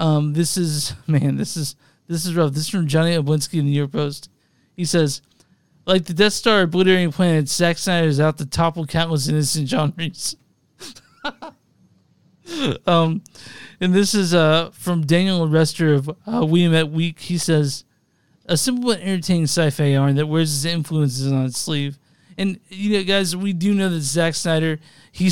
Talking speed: 180 wpm